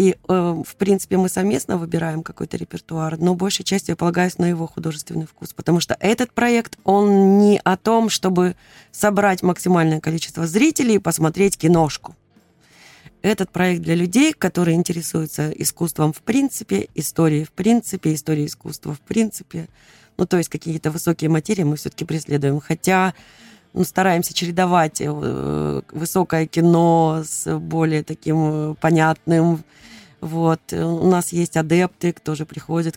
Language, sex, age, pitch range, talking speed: Russian, female, 20-39, 155-185 Hz, 135 wpm